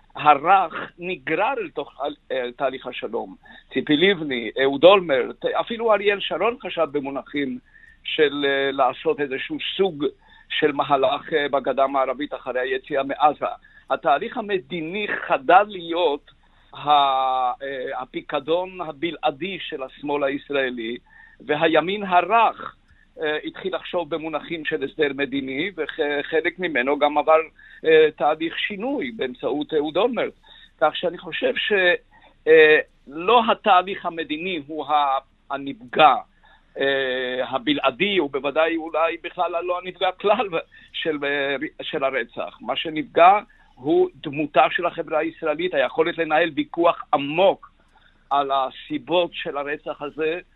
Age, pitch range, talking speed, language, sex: 50-69, 140-190 Hz, 110 wpm, English, male